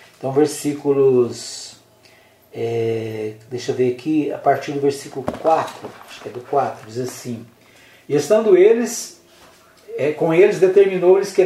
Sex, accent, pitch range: male, Brazilian, 130-170 Hz